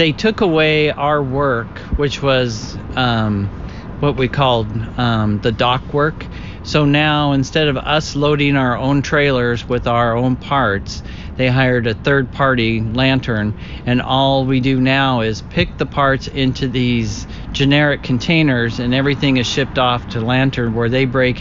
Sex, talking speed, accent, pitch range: male, 160 wpm, American, 115-140 Hz